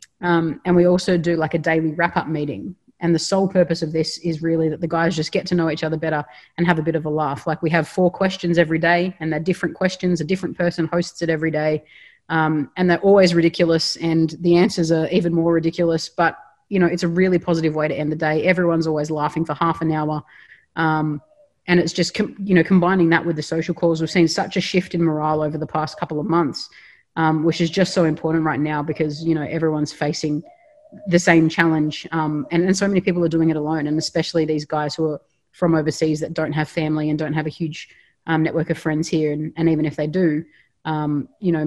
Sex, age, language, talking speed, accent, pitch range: female, 20-39, English, 240 wpm, Australian, 155-175 Hz